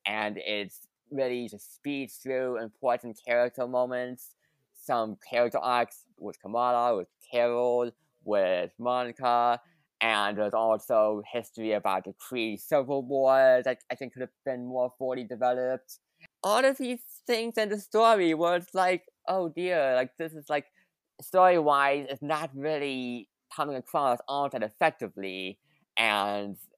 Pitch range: 115-160 Hz